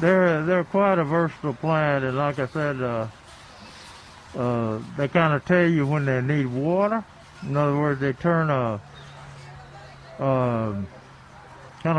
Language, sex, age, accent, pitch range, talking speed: English, male, 60-79, American, 125-165 Hz, 145 wpm